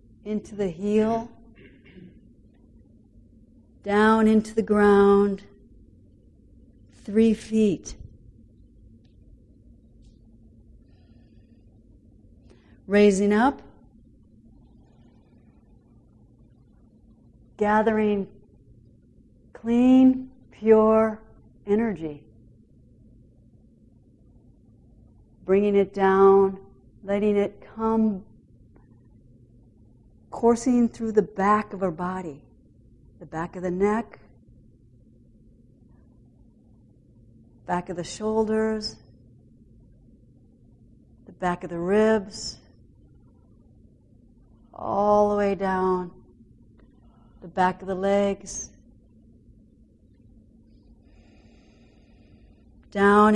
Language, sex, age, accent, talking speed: English, female, 50-69, American, 60 wpm